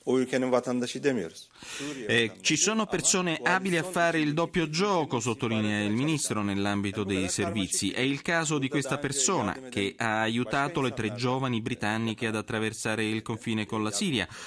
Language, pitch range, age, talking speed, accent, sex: Italian, 100-130 Hz, 30-49, 150 wpm, native, male